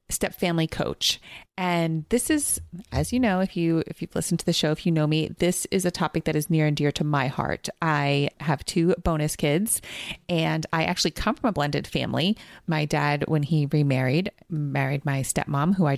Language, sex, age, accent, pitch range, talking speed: English, female, 30-49, American, 155-195 Hz, 215 wpm